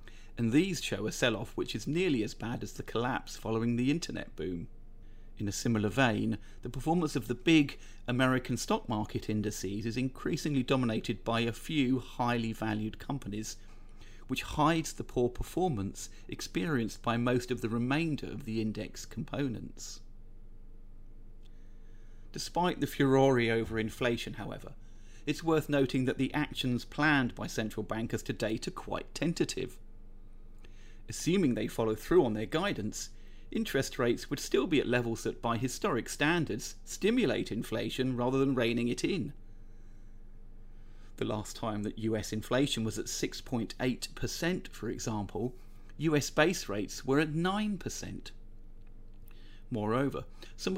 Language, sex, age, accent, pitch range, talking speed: English, male, 40-59, British, 105-130 Hz, 140 wpm